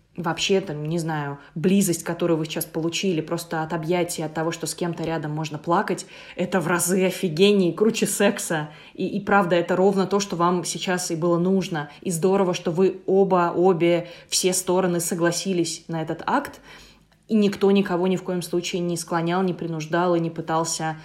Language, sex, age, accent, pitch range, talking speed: Russian, female, 20-39, native, 170-195 Hz, 180 wpm